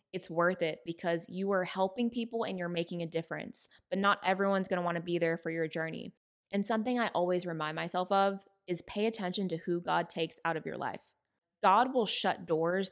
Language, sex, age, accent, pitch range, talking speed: English, female, 20-39, American, 170-200 Hz, 220 wpm